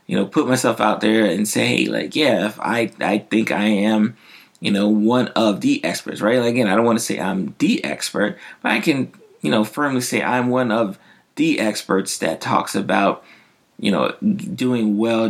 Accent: American